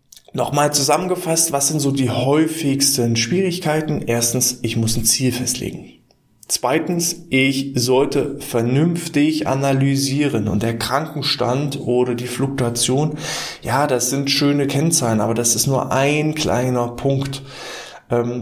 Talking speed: 125 wpm